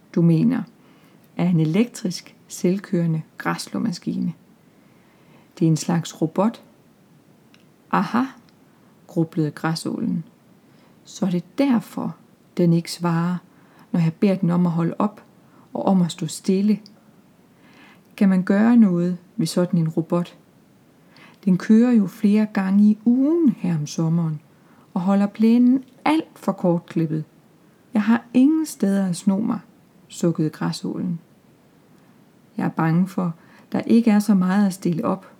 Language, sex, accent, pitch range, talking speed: Danish, female, native, 170-215 Hz, 135 wpm